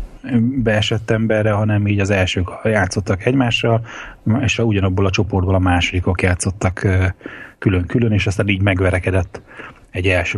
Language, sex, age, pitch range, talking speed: Hungarian, male, 30-49, 95-110 Hz, 125 wpm